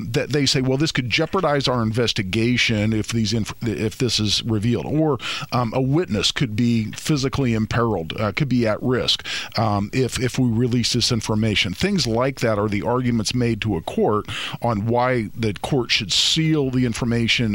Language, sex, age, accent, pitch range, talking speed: English, male, 50-69, American, 110-135 Hz, 185 wpm